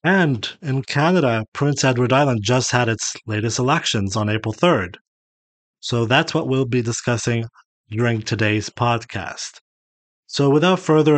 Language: English